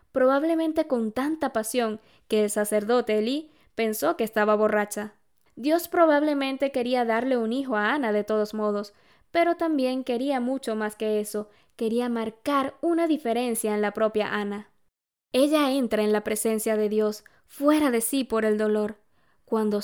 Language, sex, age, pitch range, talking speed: Spanish, female, 10-29, 215-270 Hz, 155 wpm